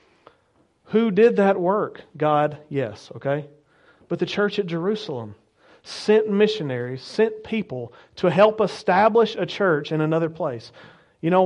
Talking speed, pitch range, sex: 135 wpm, 160-210 Hz, male